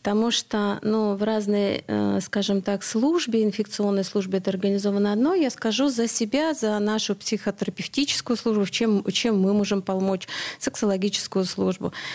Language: Russian